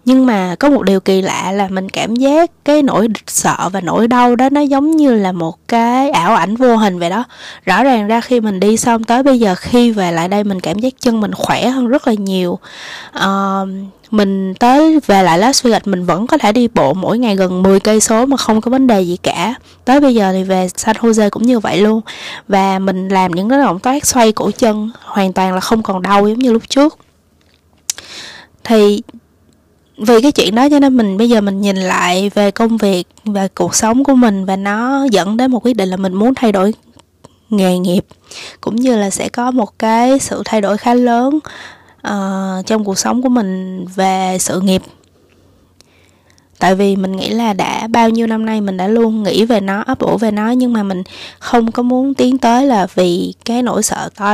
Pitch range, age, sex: 190-245 Hz, 20-39, female